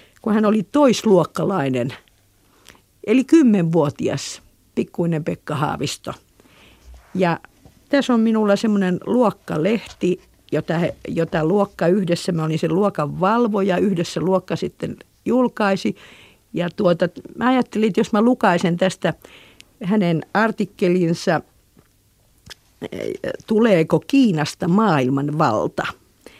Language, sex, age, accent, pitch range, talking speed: Finnish, female, 50-69, native, 165-215 Hz, 95 wpm